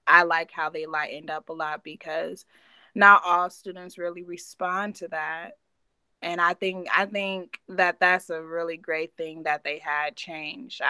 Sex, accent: female, American